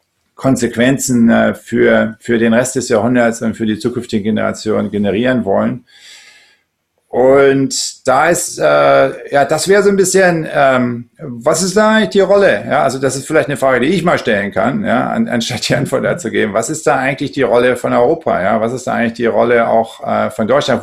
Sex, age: male, 50-69